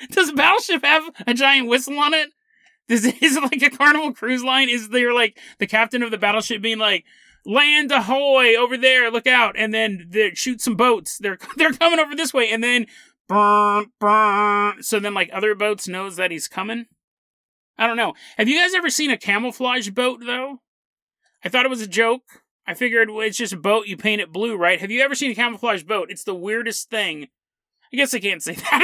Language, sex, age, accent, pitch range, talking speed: English, male, 30-49, American, 220-285 Hz, 215 wpm